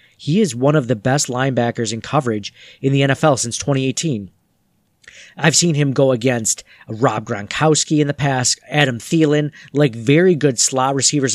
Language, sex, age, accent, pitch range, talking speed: English, male, 40-59, American, 120-160 Hz, 165 wpm